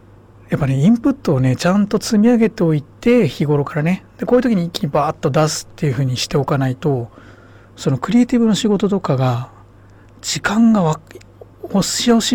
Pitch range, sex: 125-180 Hz, male